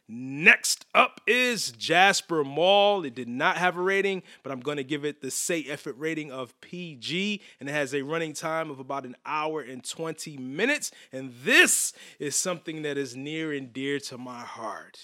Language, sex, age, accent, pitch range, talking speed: English, male, 30-49, American, 135-180 Hz, 190 wpm